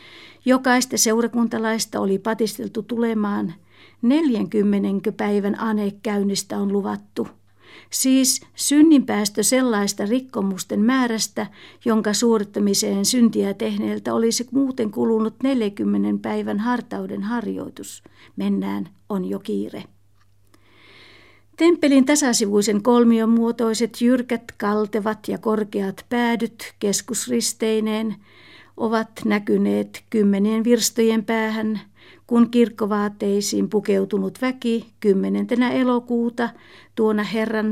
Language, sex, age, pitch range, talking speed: Finnish, female, 60-79, 200-230 Hz, 85 wpm